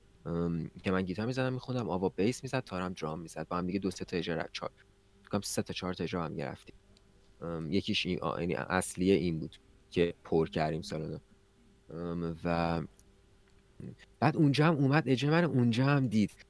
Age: 30-49